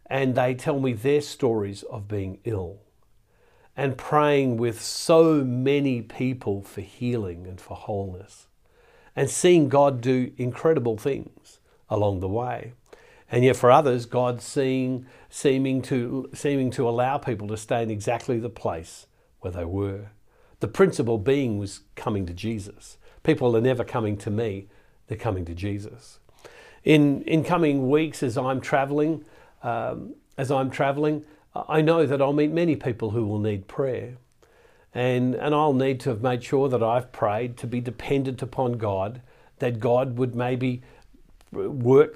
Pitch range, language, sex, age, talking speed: 105-135 Hz, English, male, 50-69, 155 wpm